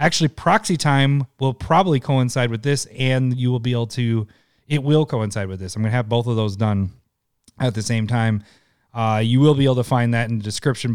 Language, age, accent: English, 30-49, American